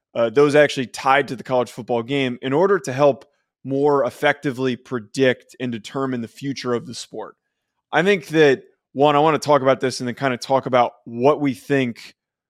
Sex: male